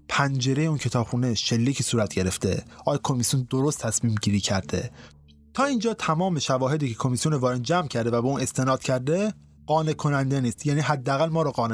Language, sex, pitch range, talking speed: Persian, male, 120-170 Hz, 175 wpm